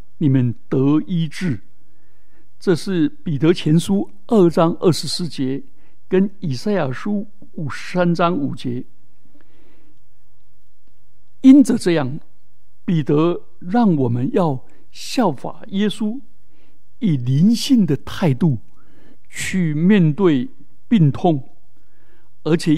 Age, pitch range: 60-79, 130-205 Hz